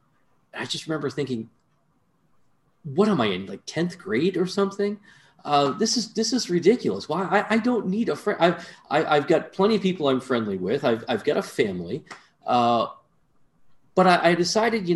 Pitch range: 120-175 Hz